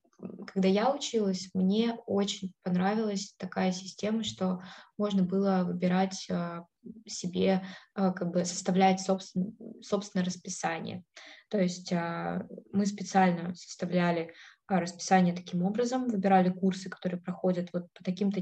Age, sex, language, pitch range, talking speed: 20-39, female, Russian, 180-210 Hz, 110 wpm